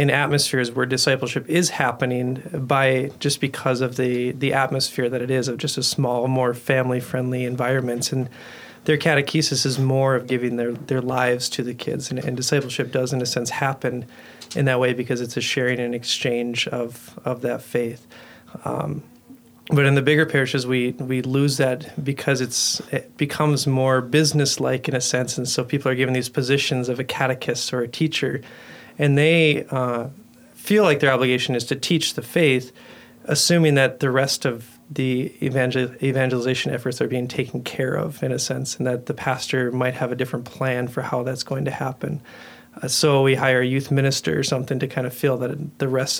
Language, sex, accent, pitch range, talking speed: English, male, American, 125-140 Hz, 195 wpm